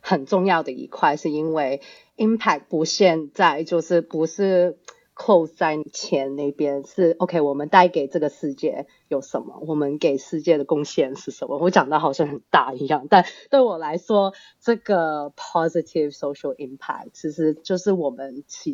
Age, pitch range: 30-49, 145-195 Hz